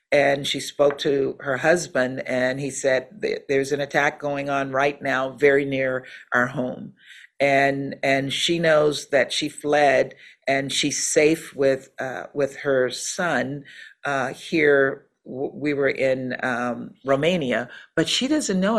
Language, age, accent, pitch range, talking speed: English, 50-69, American, 135-165 Hz, 150 wpm